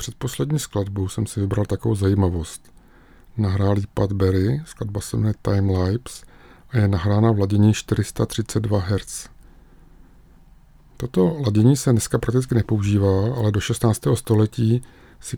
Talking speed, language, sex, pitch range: 125 wpm, Czech, male, 100-120 Hz